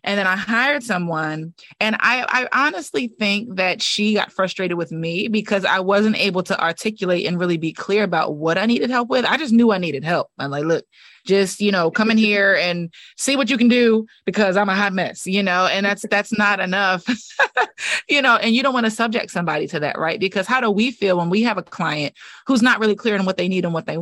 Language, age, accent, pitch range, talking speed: English, 20-39, American, 175-220 Hz, 245 wpm